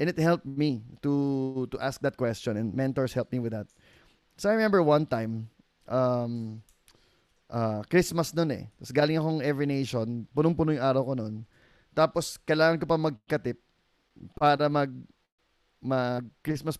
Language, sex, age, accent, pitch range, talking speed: English, male, 20-39, Filipino, 115-150 Hz, 155 wpm